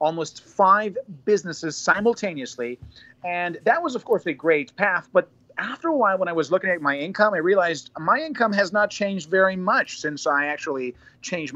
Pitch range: 135-195 Hz